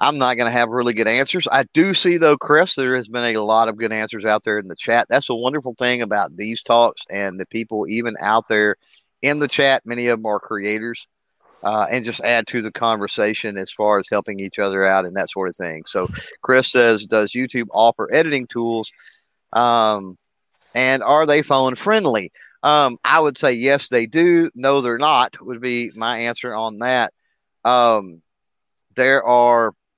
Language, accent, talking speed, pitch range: English, American, 200 wpm, 105-130 Hz